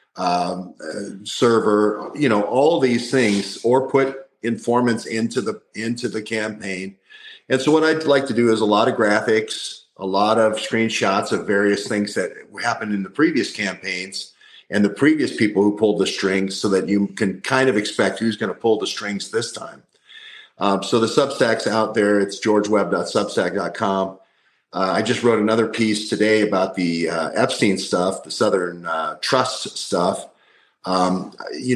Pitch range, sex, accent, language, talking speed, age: 100-115 Hz, male, American, English, 170 wpm, 50-69